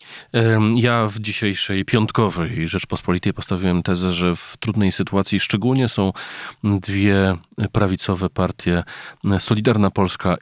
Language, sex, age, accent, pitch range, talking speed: Polish, male, 40-59, native, 85-105 Hz, 105 wpm